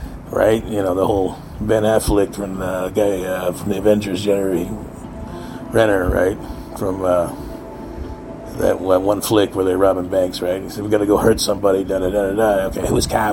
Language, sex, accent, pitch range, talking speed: English, male, American, 100-115 Hz, 200 wpm